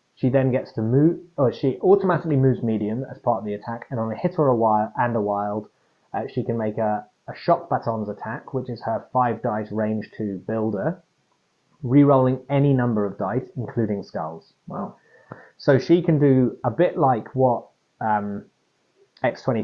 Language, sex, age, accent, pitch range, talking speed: English, male, 20-39, British, 105-135 Hz, 185 wpm